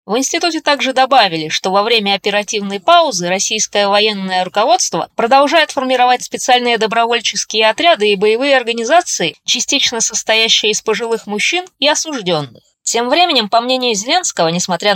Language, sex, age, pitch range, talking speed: Russian, female, 20-39, 190-245 Hz, 130 wpm